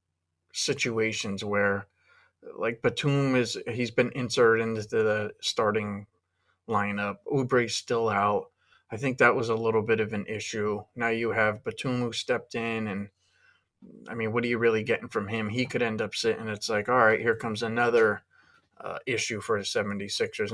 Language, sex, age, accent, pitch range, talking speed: English, male, 30-49, American, 105-120 Hz, 170 wpm